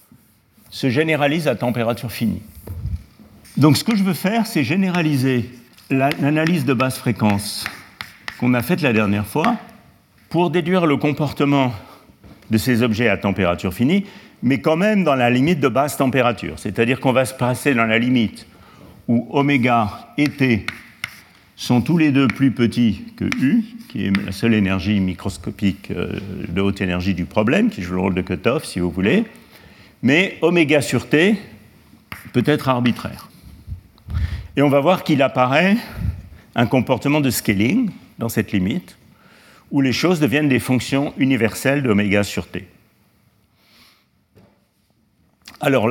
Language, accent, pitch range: French, French, 100-140 Hz